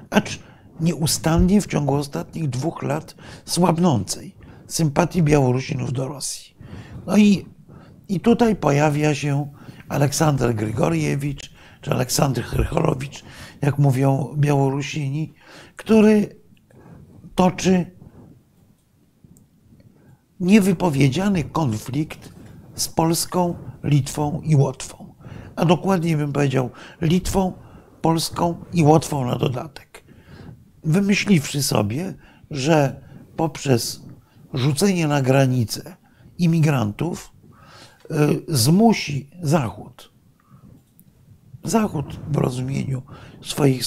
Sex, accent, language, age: male, native, Polish, 50-69